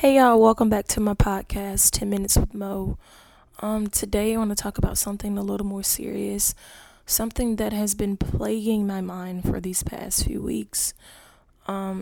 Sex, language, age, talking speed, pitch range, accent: female, English, 20-39, 180 wpm, 190-215 Hz, American